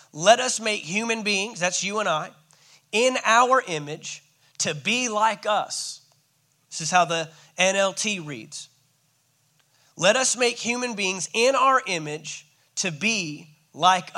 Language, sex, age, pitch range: English, male, 30-49, 155-200 Hz